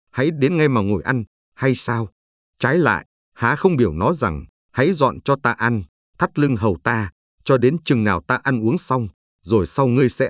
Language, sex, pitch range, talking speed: Vietnamese, male, 100-140 Hz, 210 wpm